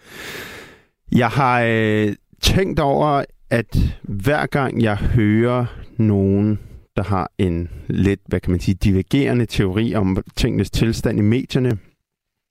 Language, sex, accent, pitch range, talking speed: Danish, male, native, 100-125 Hz, 120 wpm